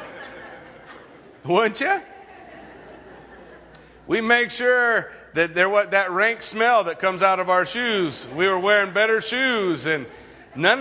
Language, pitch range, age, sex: English, 155-230 Hz, 40-59, male